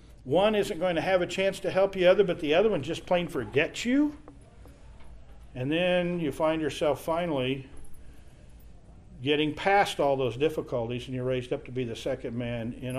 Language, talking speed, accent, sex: English, 180 wpm, American, male